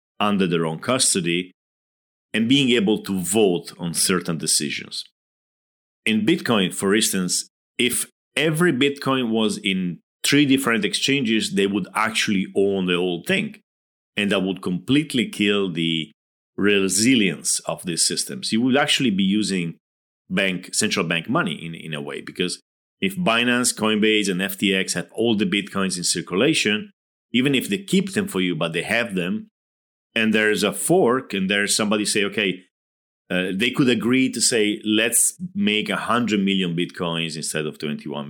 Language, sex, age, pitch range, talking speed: English, male, 40-59, 90-120 Hz, 160 wpm